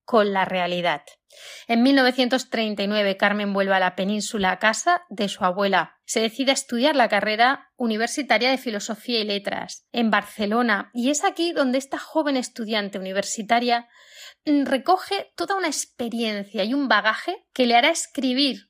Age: 20-39